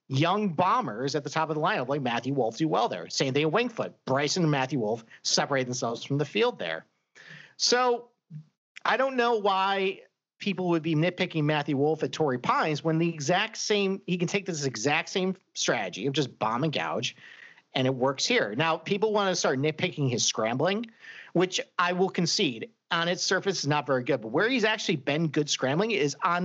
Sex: male